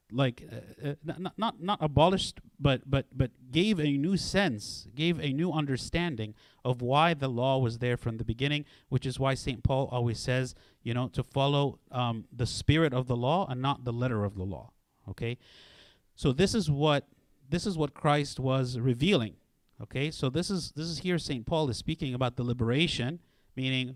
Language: English